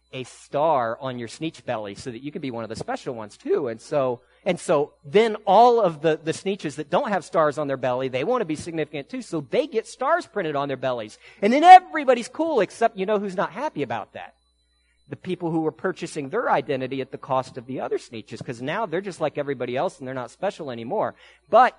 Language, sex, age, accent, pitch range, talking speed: English, male, 40-59, American, 135-195 Hz, 240 wpm